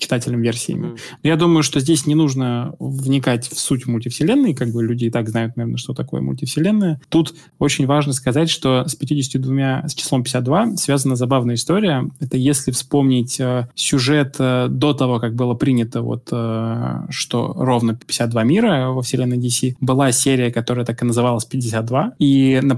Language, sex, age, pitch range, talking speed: Russian, male, 20-39, 120-140 Hz, 160 wpm